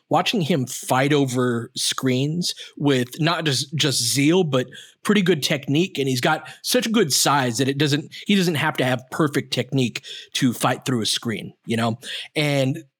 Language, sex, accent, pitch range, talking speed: English, male, American, 130-160 Hz, 180 wpm